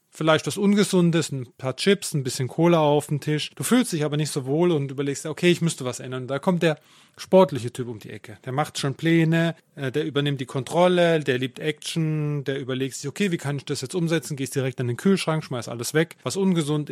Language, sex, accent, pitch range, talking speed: German, male, German, 135-165 Hz, 235 wpm